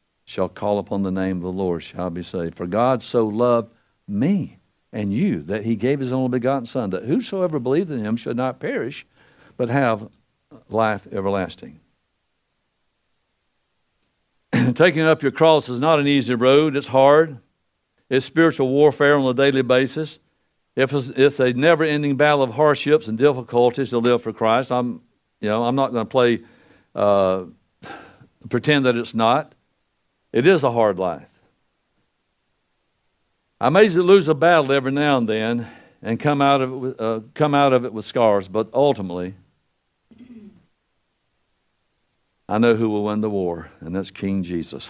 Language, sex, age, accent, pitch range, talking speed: English, male, 60-79, American, 110-145 Hz, 160 wpm